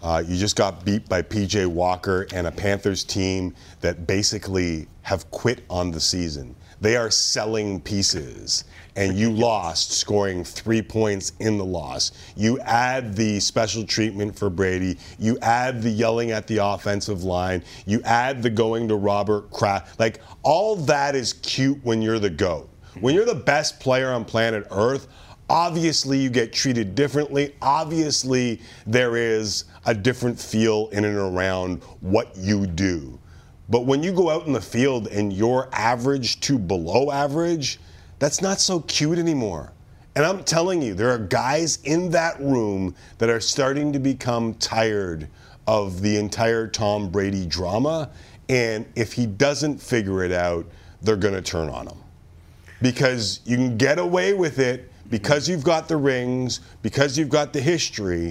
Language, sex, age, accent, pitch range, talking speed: English, male, 40-59, American, 95-130 Hz, 165 wpm